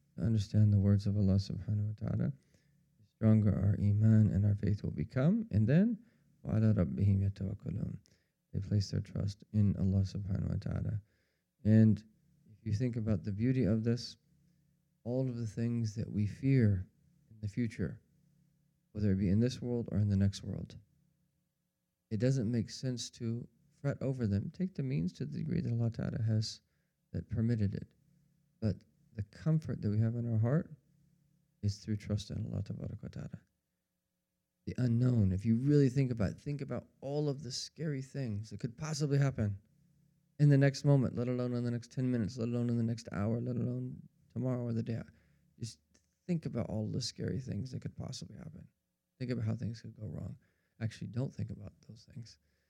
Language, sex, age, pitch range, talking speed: English, male, 40-59, 105-140 Hz, 185 wpm